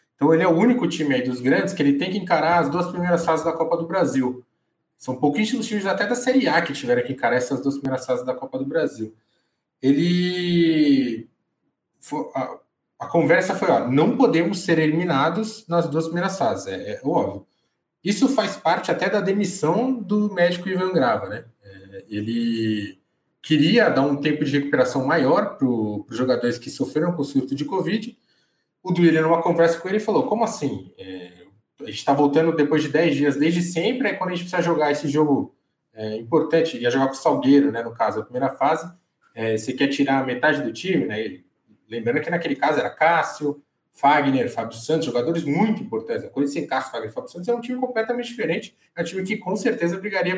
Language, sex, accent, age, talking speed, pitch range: Portuguese, male, Brazilian, 20-39, 205 wpm, 135-180 Hz